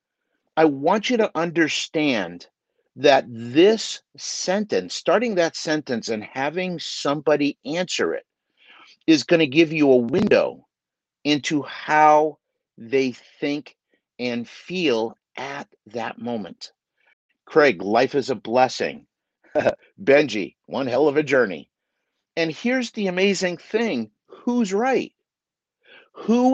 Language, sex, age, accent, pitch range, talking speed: English, male, 50-69, American, 160-225 Hz, 115 wpm